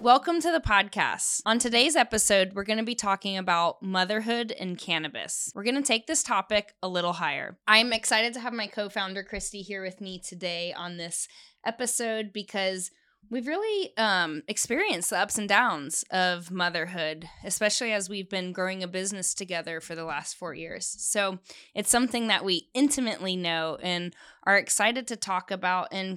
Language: English